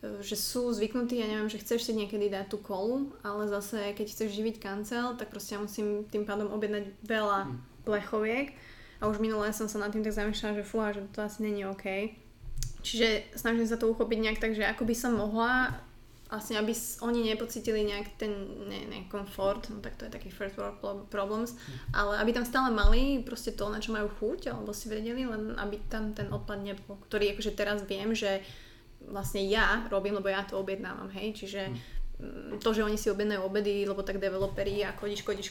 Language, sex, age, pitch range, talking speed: Slovak, female, 20-39, 195-220 Hz, 200 wpm